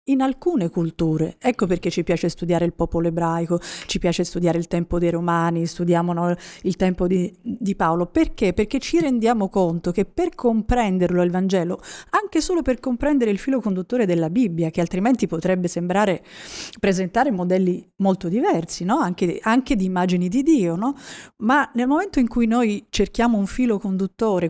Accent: native